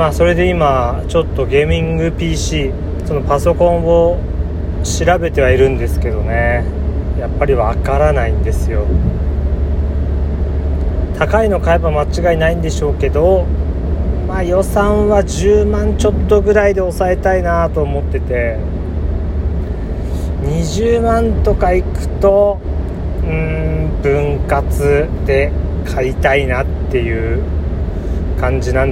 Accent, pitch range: native, 75-85 Hz